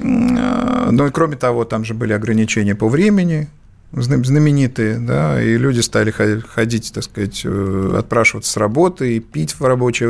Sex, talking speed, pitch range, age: male, 150 wpm, 115-155 Hz, 50-69